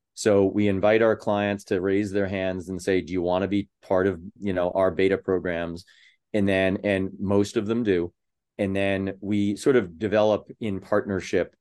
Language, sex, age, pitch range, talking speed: English, male, 30-49, 95-105 Hz, 195 wpm